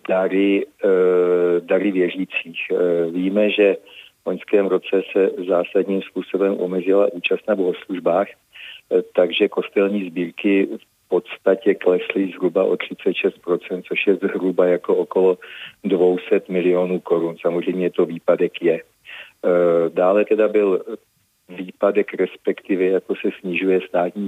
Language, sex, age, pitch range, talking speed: Czech, male, 40-59, 90-100 Hz, 110 wpm